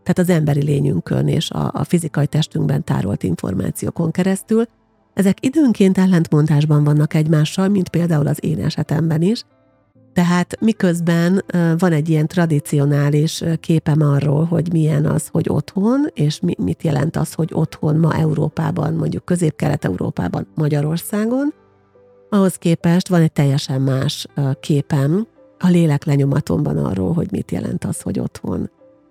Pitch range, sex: 150-175 Hz, female